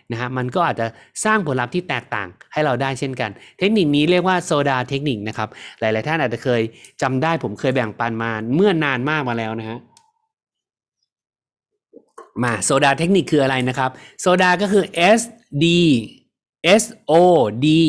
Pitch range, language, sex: 130-175 Hz, Thai, male